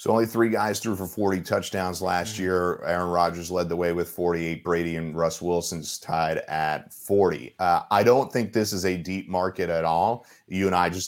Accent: American